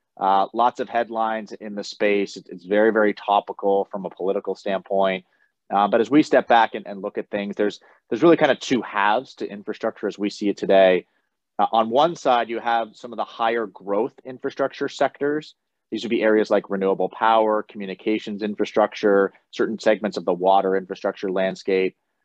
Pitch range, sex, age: 95-115 Hz, male, 30-49